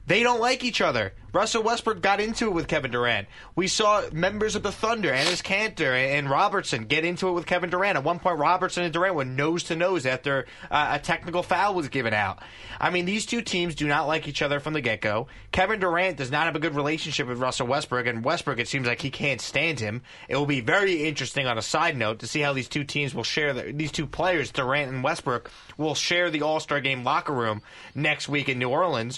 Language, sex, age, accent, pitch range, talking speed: English, male, 30-49, American, 140-185 Hz, 230 wpm